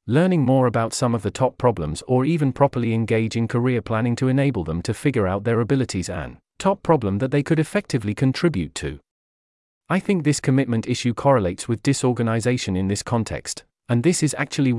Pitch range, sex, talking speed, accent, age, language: 105-140 Hz, male, 190 wpm, British, 40-59, English